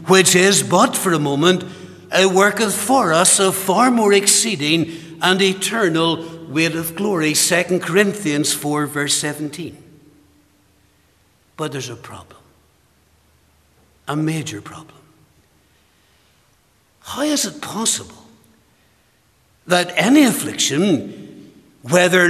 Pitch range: 145-190 Hz